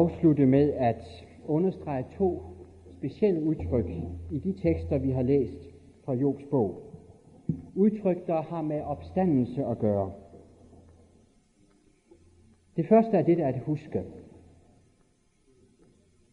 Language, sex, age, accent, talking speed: Danish, male, 60-79, native, 115 wpm